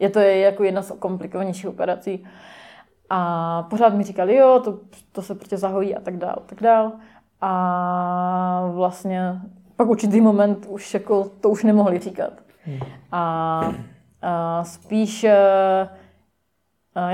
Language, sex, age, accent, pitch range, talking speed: Czech, female, 20-39, native, 180-205 Hz, 135 wpm